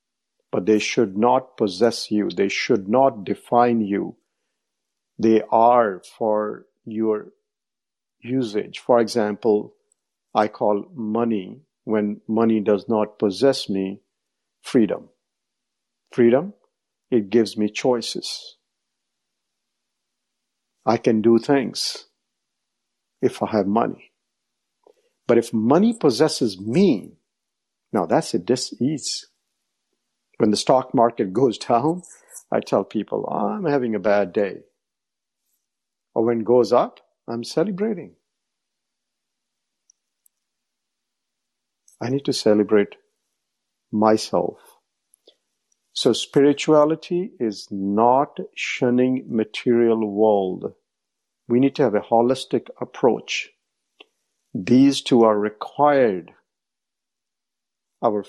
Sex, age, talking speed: male, 50-69, 100 wpm